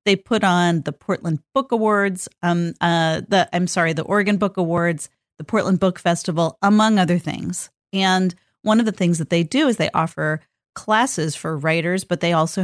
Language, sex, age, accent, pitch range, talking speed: English, female, 40-59, American, 165-210 Hz, 190 wpm